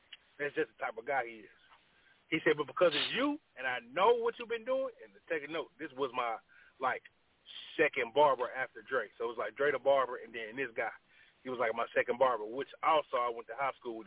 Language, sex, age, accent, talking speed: English, male, 30-49, American, 250 wpm